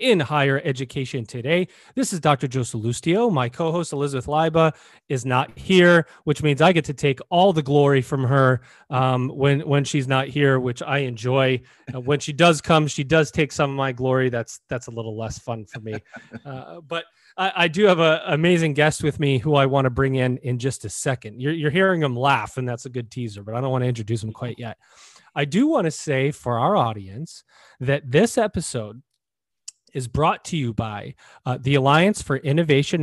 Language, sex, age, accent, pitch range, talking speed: English, male, 30-49, American, 125-160 Hz, 215 wpm